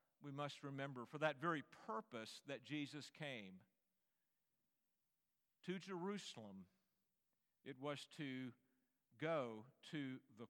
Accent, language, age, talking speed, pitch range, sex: American, English, 50-69, 105 wpm, 130-175 Hz, male